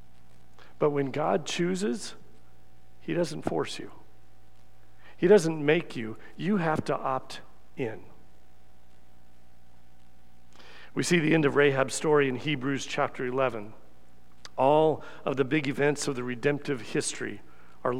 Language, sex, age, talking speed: English, male, 40-59, 125 wpm